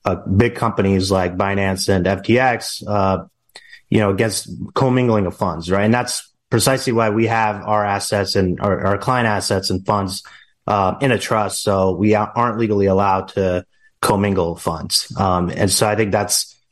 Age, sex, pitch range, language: 30-49, male, 95-120 Hz, English